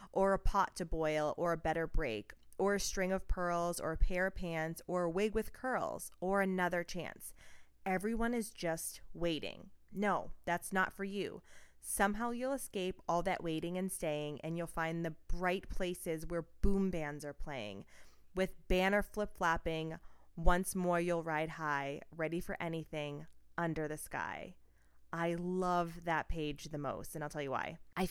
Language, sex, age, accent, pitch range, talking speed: English, female, 20-39, American, 155-190 Hz, 175 wpm